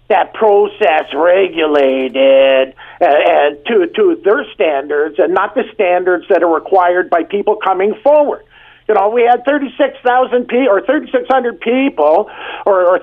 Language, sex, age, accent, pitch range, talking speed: English, male, 50-69, American, 175-250 Hz, 160 wpm